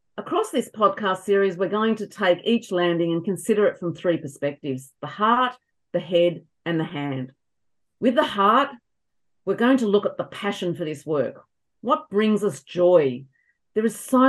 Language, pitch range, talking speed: English, 155-205 Hz, 180 wpm